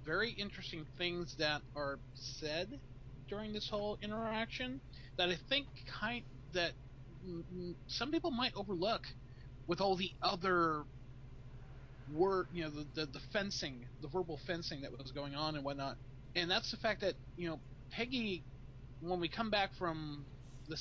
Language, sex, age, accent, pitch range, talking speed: English, male, 30-49, American, 130-175 Hz, 155 wpm